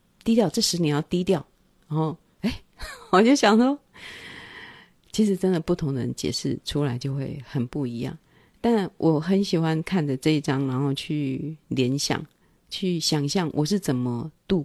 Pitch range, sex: 145-190 Hz, female